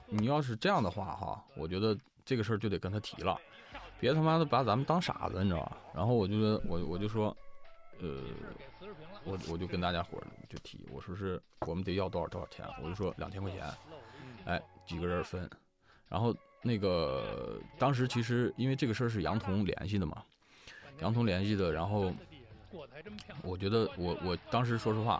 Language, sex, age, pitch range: Chinese, male, 20-39, 90-115 Hz